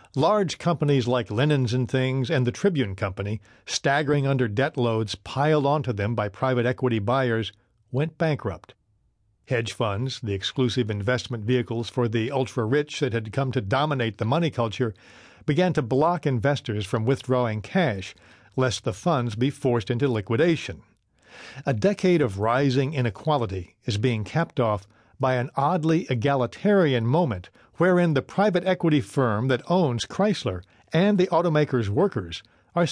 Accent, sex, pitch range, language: American, male, 110-145 Hz, English